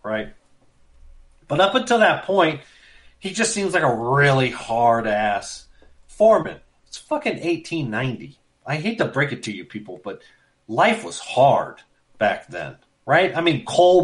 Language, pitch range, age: English, 110-160 Hz, 40-59